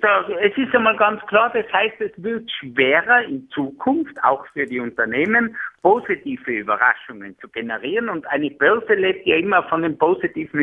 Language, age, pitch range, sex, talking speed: German, 60-79, 165-240 Hz, male, 170 wpm